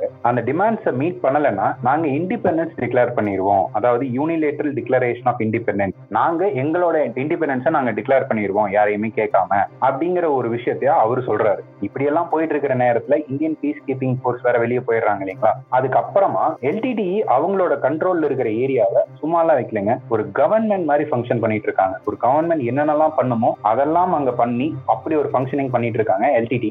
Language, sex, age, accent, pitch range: Tamil, male, 30-49, native, 120-155 Hz